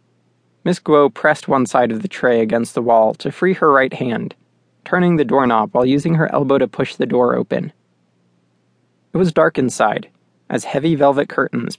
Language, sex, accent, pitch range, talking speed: English, male, American, 110-155 Hz, 185 wpm